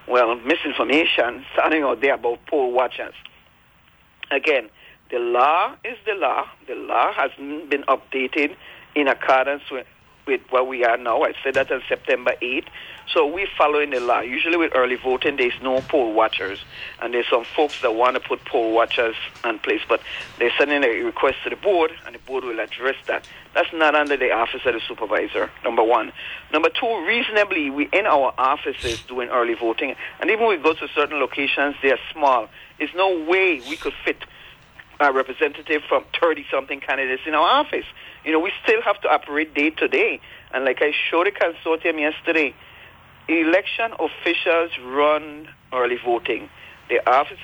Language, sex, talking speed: English, male, 175 wpm